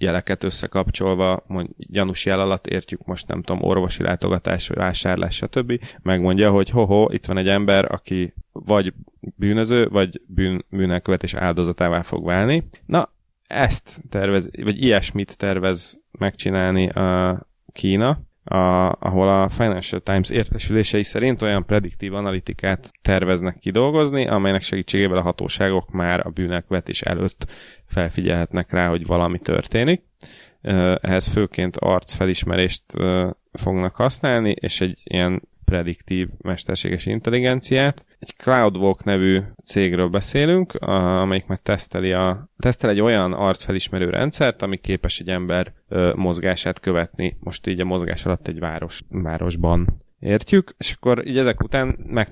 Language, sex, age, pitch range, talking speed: Hungarian, male, 30-49, 90-110 Hz, 130 wpm